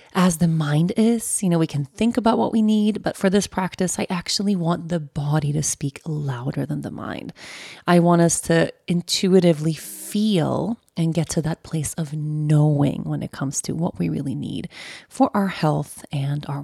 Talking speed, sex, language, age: 195 wpm, female, English, 30-49